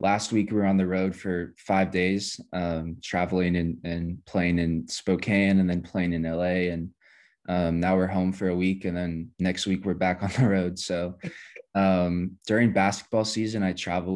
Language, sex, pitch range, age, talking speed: English, male, 90-95 Hz, 20-39, 195 wpm